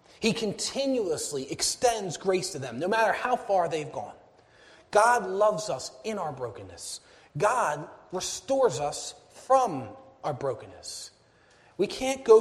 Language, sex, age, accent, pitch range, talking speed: English, male, 30-49, American, 160-225 Hz, 130 wpm